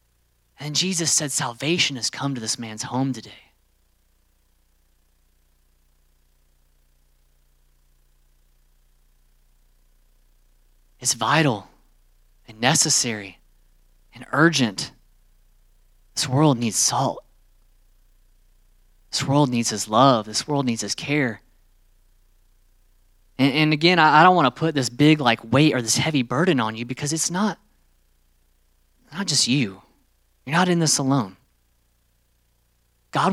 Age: 30-49